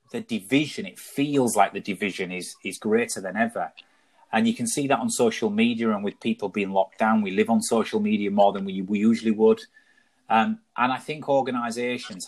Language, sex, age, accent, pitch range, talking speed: English, male, 30-49, British, 100-140 Hz, 205 wpm